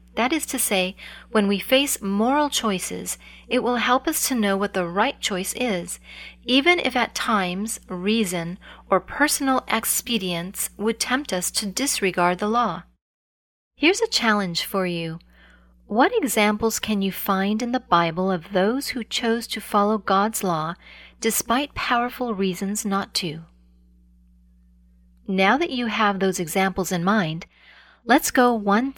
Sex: female